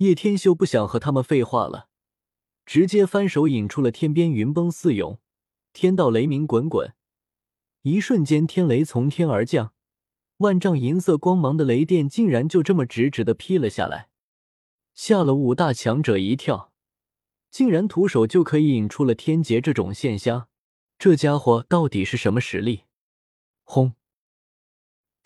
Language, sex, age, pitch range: Chinese, male, 20-39, 115-170 Hz